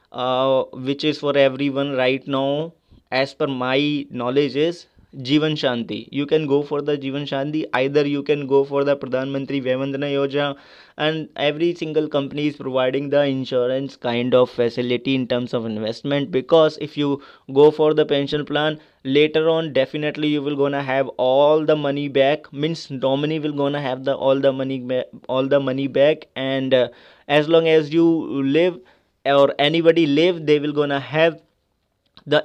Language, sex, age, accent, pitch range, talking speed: English, male, 20-39, Indian, 135-155 Hz, 170 wpm